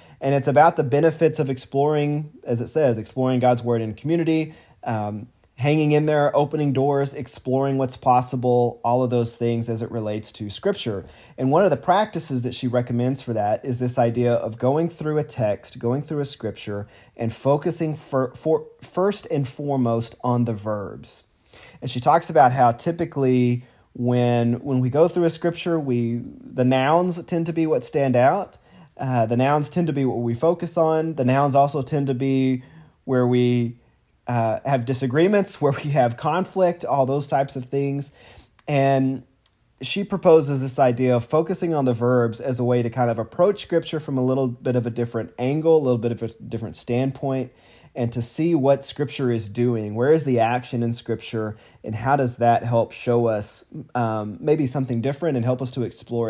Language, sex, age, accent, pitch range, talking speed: English, male, 30-49, American, 120-145 Hz, 190 wpm